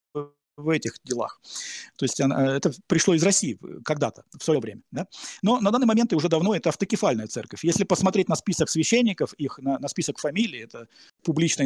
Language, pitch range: Russian, 130-175 Hz